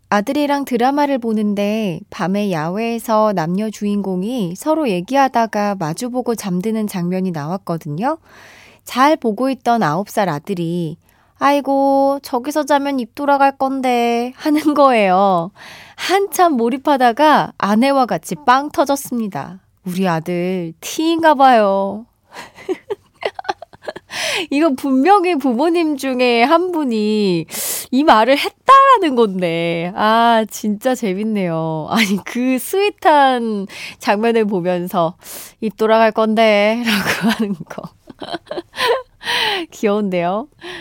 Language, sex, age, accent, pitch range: Korean, female, 20-39, native, 195-290 Hz